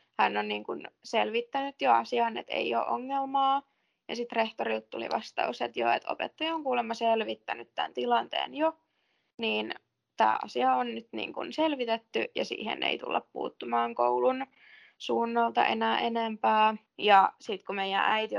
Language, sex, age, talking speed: Finnish, female, 20-39, 155 wpm